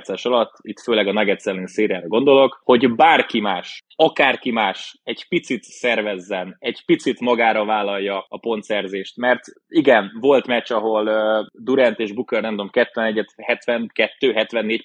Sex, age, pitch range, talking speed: male, 20-39, 115-145 Hz, 130 wpm